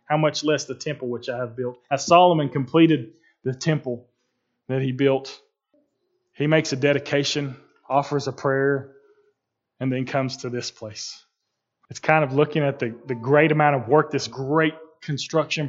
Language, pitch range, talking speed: English, 130-160 Hz, 170 wpm